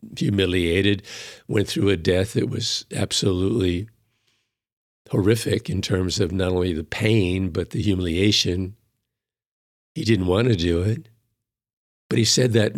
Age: 60-79